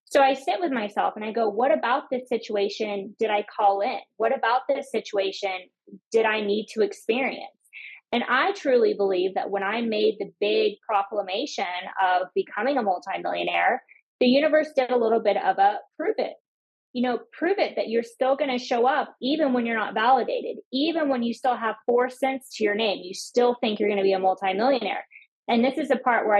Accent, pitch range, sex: American, 200-250 Hz, female